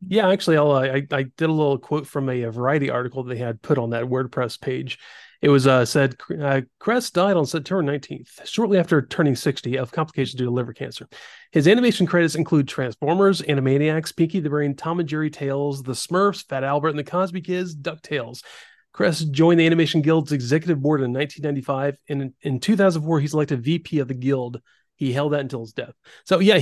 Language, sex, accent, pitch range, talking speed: English, male, American, 135-170 Hz, 210 wpm